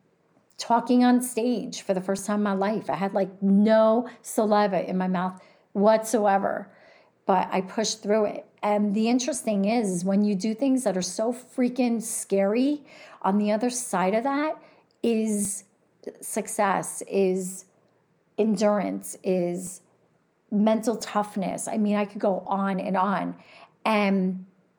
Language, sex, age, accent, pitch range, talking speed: English, female, 40-59, American, 200-235 Hz, 145 wpm